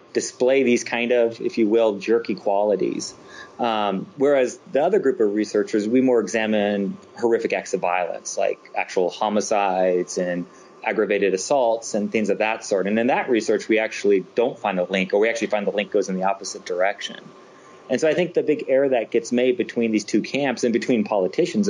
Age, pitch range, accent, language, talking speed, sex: 30-49, 100-140 Hz, American, English, 200 wpm, male